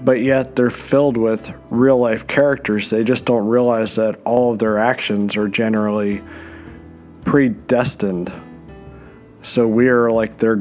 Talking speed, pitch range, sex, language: 130 wpm, 105-125 Hz, male, English